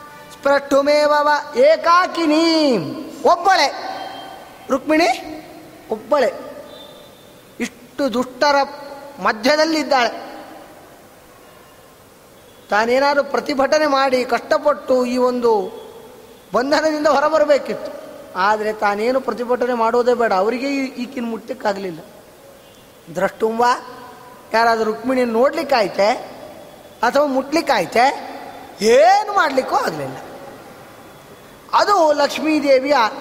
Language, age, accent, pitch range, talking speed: Kannada, 20-39, native, 260-295 Hz, 65 wpm